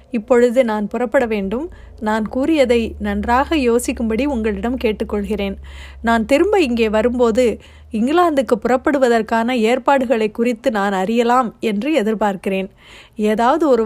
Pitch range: 220-270 Hz